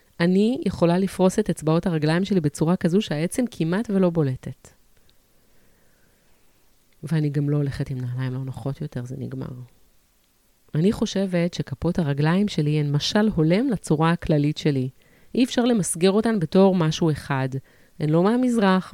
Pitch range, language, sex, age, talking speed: 140-185 Hz, Hebrew, female, 30-49, 145 wpm